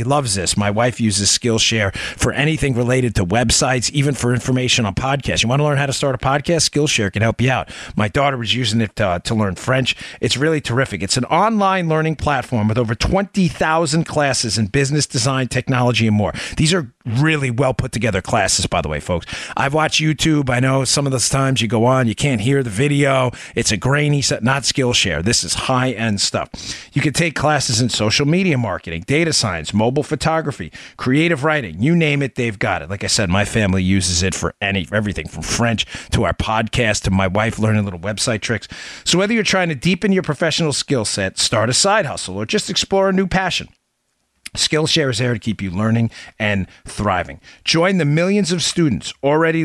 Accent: American